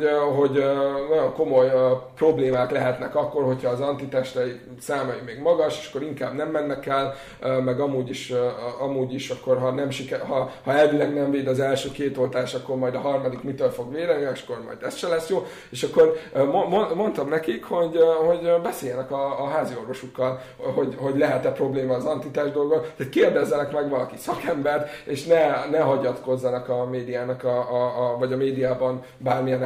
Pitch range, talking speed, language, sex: 130-160 Hz, 175 wpm, Hungarian, male